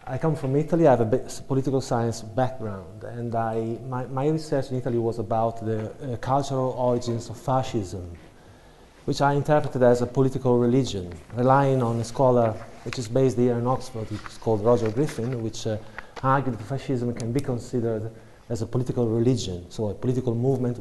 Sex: male